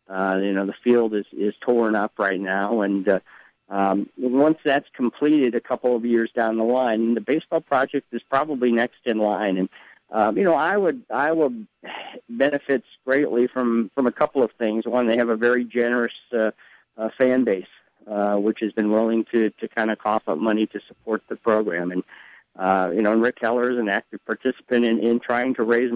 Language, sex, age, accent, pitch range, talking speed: English, male, 50-69, American, 110-125 Hz, 210 wpm